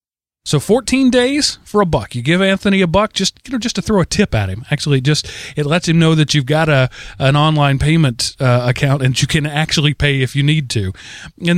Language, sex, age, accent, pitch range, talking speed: English, male, 30-49, American, 150-220 Hz, 240 wpm